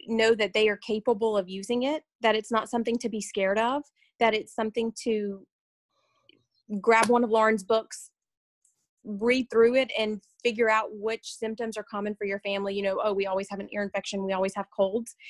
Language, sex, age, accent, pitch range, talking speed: English, female, 30-49, American, 205-235 Hz, 200 wpm